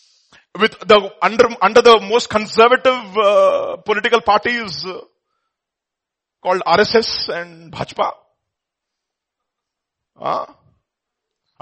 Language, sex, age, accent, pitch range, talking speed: English, male, 30-49, Indian, 165-225 Hz, 85 wpm